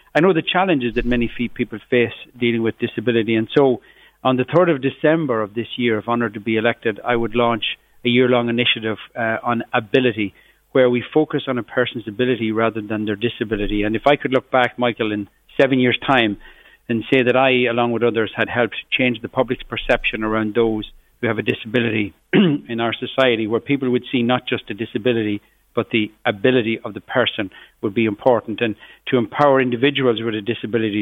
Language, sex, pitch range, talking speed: English, male, 110-125 Hz, 200 wpm